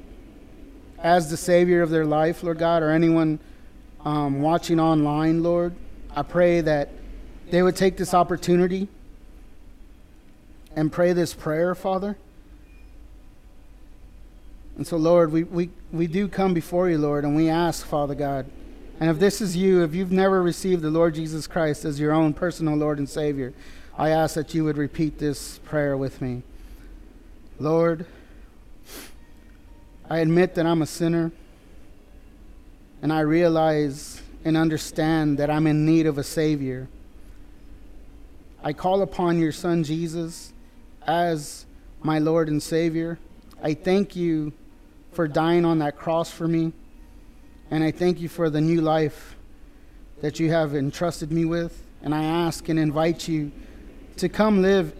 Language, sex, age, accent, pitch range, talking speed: English, male, 30-49, American, 145-170 Hz, 150 wpm